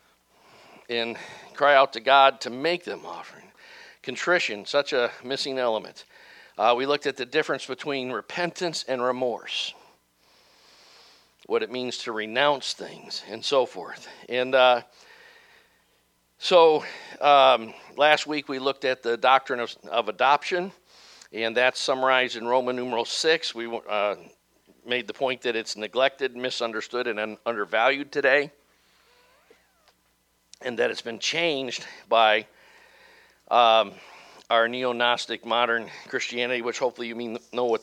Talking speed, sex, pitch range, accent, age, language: 130 wpm, male, 115-145 Hz, American, 50-69, English